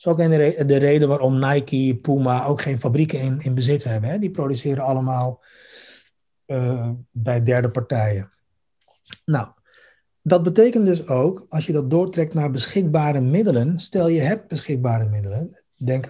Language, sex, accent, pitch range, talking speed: Dutch, male, Dutch, 120-160 Hz, 150 wpm